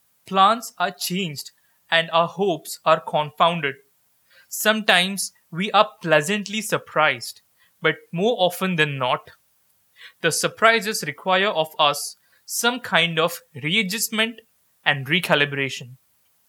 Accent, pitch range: Indian, 150-210 Hz